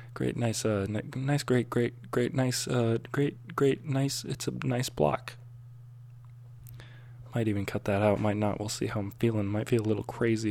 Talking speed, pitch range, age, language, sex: 190 wpm, 100-120 Hz, 20-39, English, male